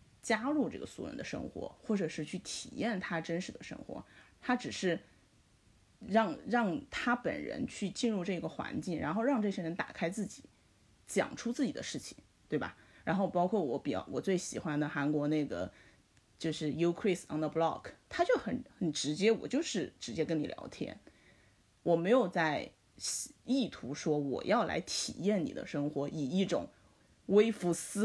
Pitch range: 155-235 Hz